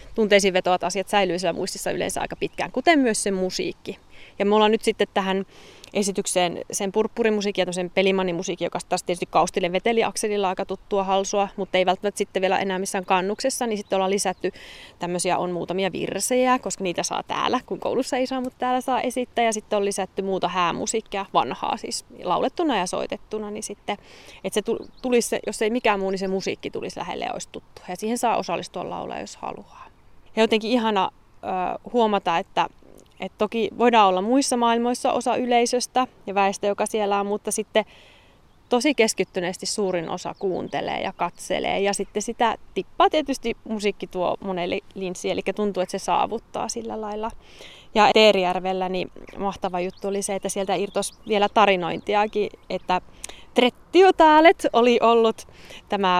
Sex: female